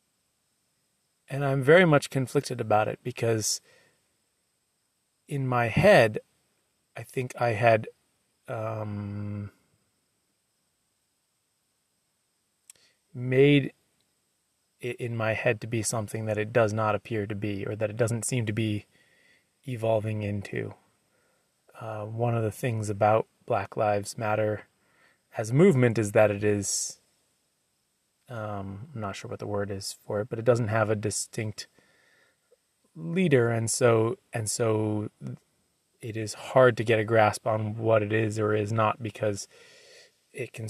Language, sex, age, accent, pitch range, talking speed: English, male, 30-49, American, 105-120 Hz, 135 wpm